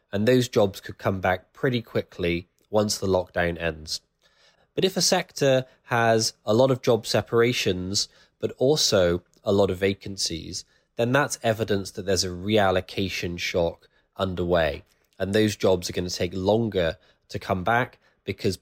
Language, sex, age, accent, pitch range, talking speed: English, male, 20-39, British, 95-115 Hz, 160 wpm